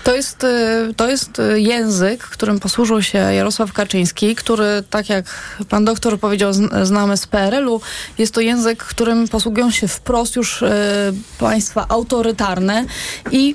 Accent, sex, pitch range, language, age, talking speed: native, female, 210-255 Hz, Polish, 20-39, 130 wpm